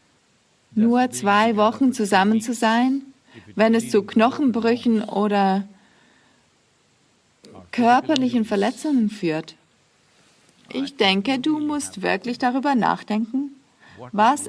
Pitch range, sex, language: 200-250 Hz, female, English